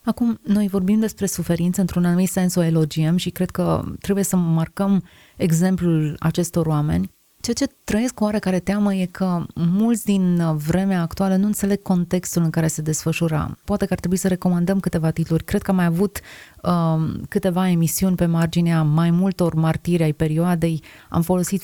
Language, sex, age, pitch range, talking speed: Romanian, female, 30-49, 165-195 Hz, 175 wpm